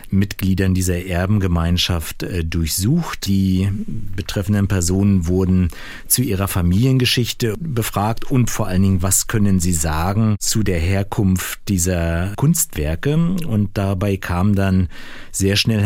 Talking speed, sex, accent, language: 115 wpm, male, German, German